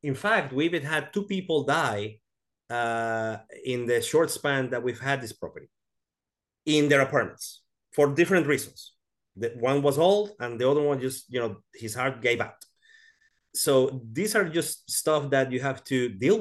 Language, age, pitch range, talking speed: English, 30-49, 110-140 Hz, 170 wpm